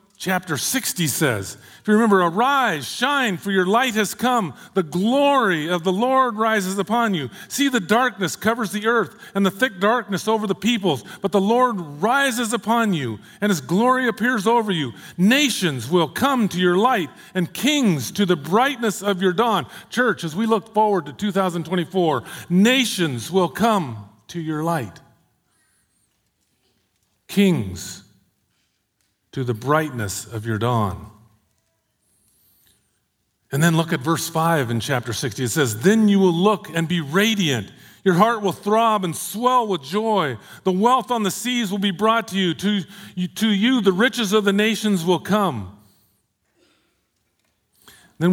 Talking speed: 160 wpm